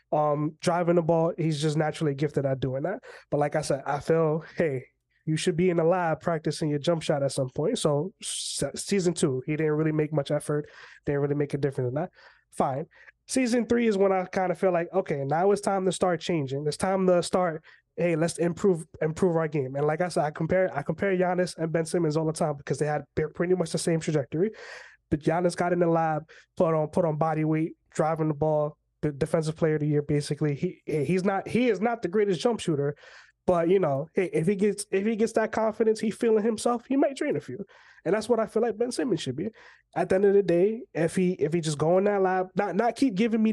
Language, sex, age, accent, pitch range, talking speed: English, male, 20-39, American, 155-195 Hz, 245 wpm